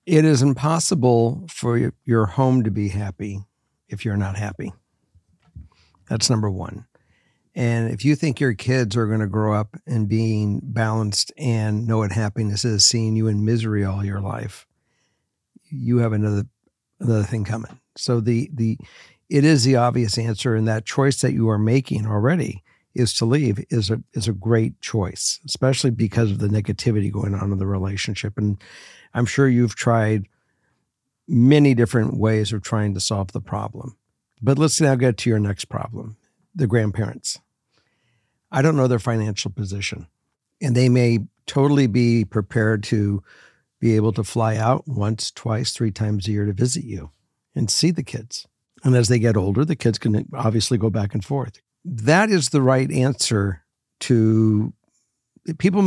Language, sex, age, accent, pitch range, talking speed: English, male, 60-79, American, 105-130 Hz, 170 wpm